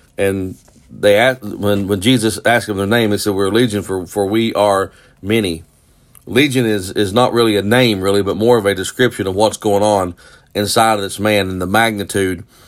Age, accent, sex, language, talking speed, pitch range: 40-59, American, male, English, 210 wpm, 95-115 Hz